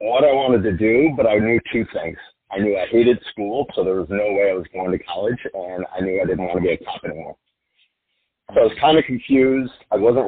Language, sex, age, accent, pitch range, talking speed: English, male, 50-69, American, 105-125 Hz, 255 wpm